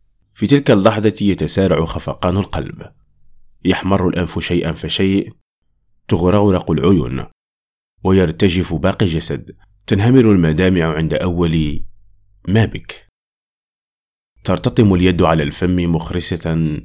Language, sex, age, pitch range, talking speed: Arabic, male, 30-49, 80-100 Hz, 95 wpm